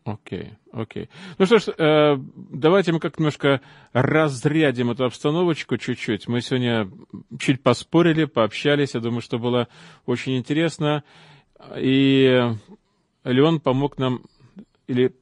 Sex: male